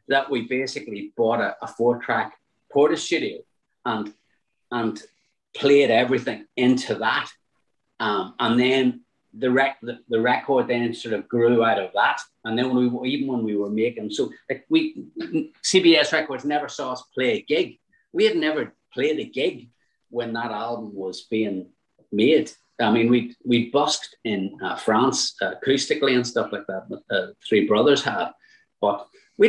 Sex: male